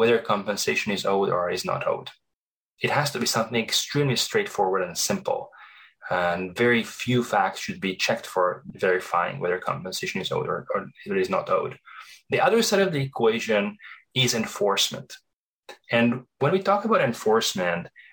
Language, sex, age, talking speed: English, male, 20-39, 165 wpm